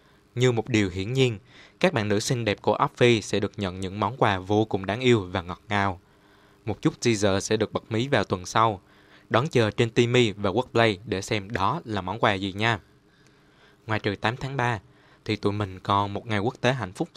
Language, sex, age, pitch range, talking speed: Vietnamese, male, 20-39, 100-120 Hz, 225 wpm